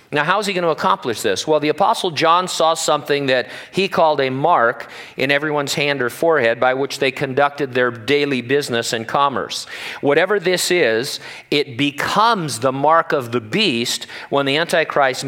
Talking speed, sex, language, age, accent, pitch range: 180 wpm, male, English, 50-69, American, 125-160 Hz